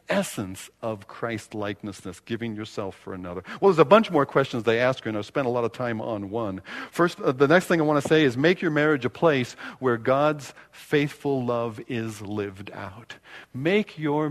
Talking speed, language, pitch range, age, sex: 205 wpm, English, 110-175 Hz, 50-69, male